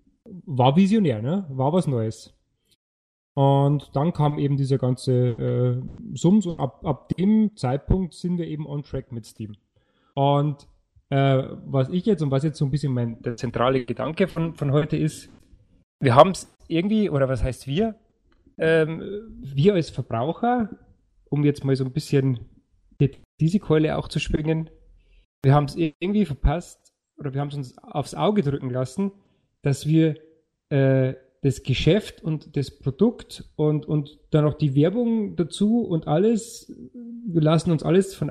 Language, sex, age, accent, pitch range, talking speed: German, male, 30-49, German, 135-180 Hz, 165 wpm